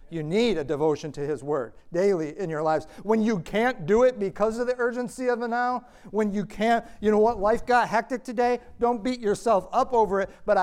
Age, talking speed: 50-69, 225 wpm